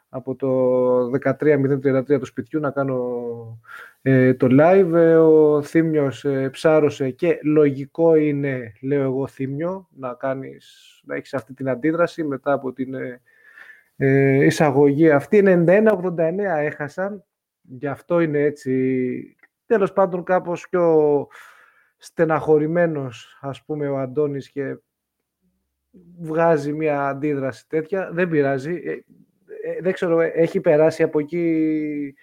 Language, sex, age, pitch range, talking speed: Greek, male, 20-39, 140-180 Hz, 110 wpm